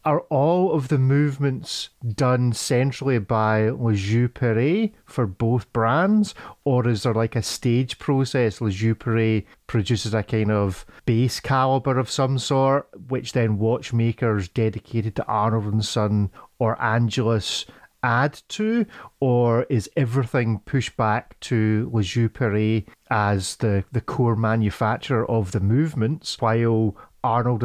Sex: male